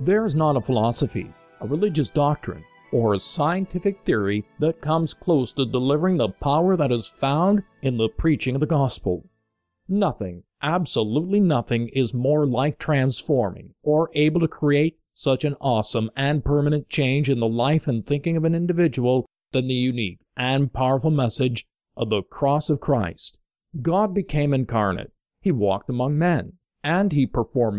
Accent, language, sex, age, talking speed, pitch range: American, English, male, 50-69, 160 wpm, 120-165 Hz